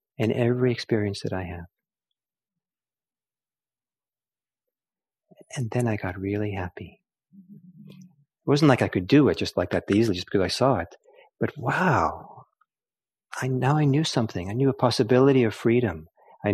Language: English